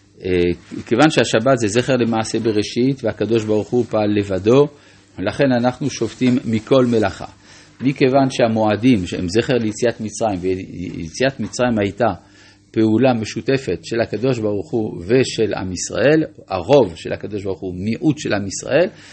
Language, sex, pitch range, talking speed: Hebrew, male, 105-140 Hz, 135 wpm